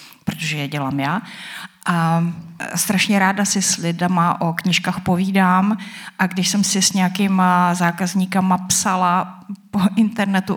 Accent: native